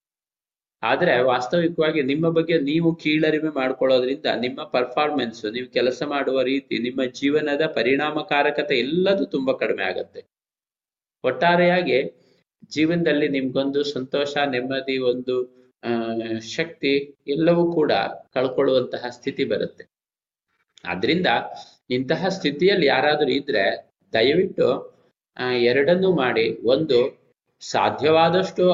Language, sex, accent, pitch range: Kannada, male, native, 130-160 Hz